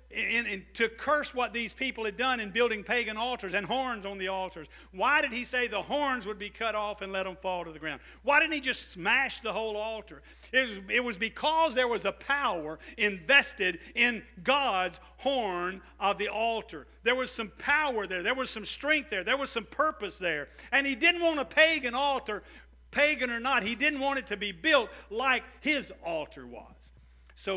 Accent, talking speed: American, 200 wpm